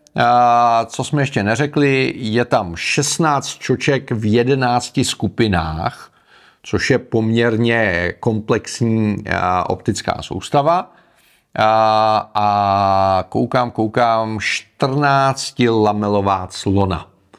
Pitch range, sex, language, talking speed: 105-135 Hz, male, Czech, 85 wpm